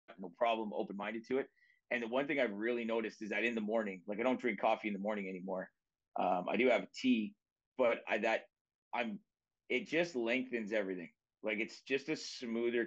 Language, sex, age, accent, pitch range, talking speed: English, male, 30-49, American, 110-130 Hz, 205 wpm